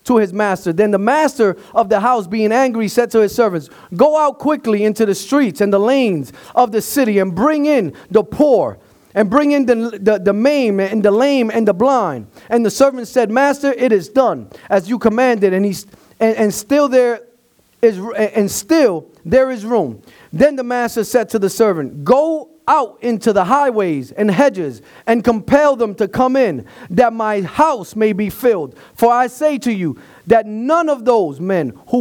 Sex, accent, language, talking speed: male, American, English, 195 wpm